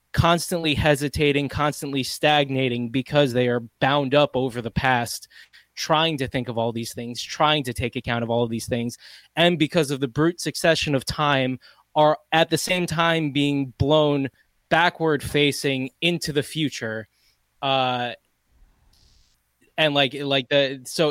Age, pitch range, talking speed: 20-39, 125-150 Hz, 150 wpm